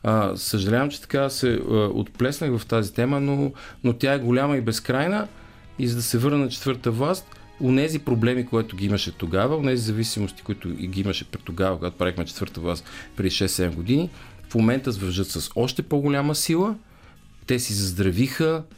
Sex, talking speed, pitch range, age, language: male, 180 wpm, 95-135 Hz, 40-59, Bulgarian